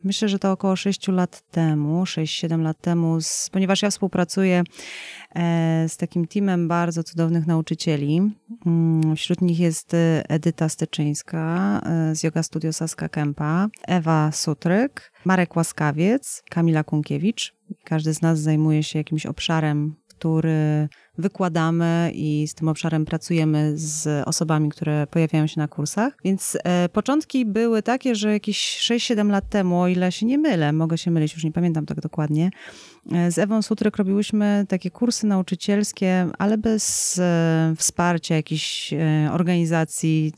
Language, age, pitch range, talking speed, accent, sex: Polish, 30-49, 160-195 Hz, 140 wpm, native, female